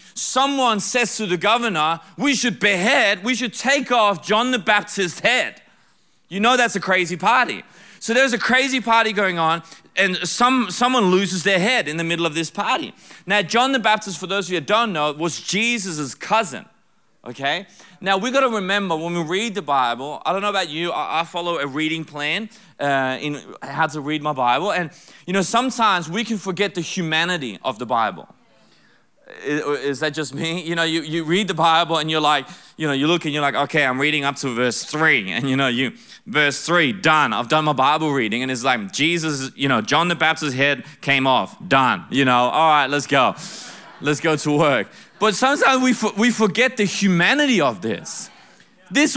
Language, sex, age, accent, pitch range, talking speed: Swedish, male, 30-49, Australian, 155-225 Hz, 205 wpm